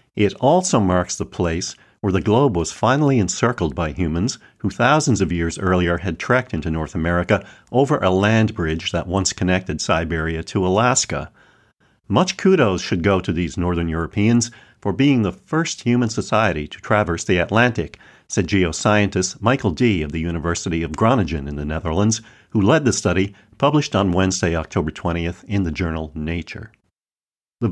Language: English